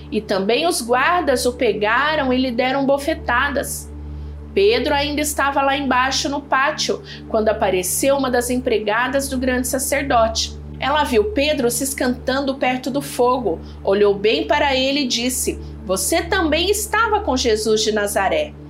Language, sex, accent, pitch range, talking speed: Portuguese, female, Brazilian, 210-305 Hz, 150 wpm